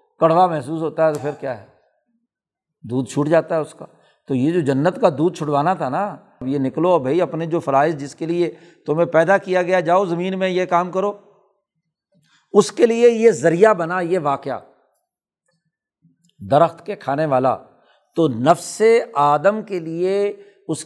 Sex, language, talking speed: male, Urdu, 175 wpm